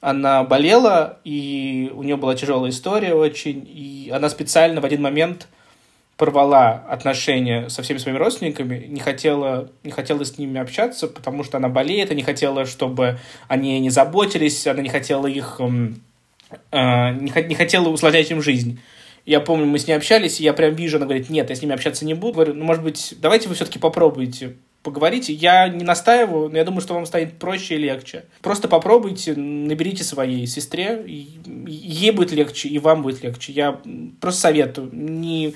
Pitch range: 135-160 Hz